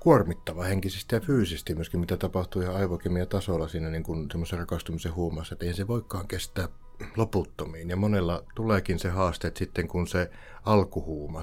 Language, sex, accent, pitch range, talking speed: Finnish, male, native, 85-100 Hz, 160 wpm